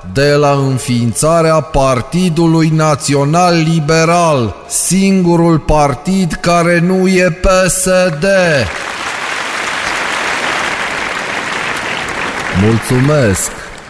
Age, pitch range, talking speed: 30-49, 110-160 Hz, 50 wpm